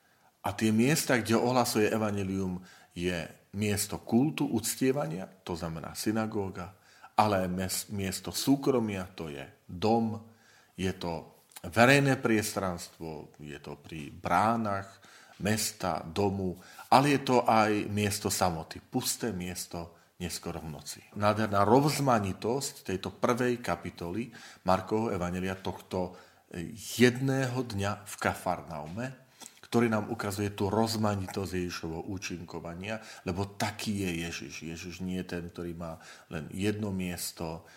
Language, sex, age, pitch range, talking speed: Slovak, male, 40-59, 85-110 Hz, 115 wpm